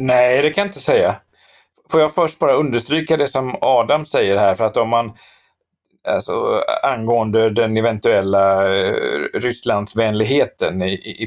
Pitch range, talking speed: 100-160 Hz, 150 wpm